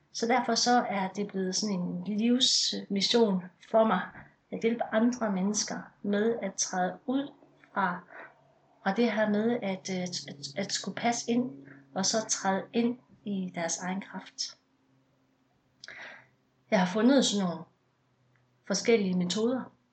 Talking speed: 135 wpm